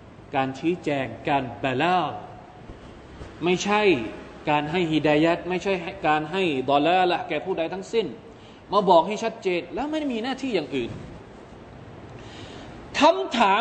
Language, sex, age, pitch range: Thai, male, 20-39, 160-230 Hz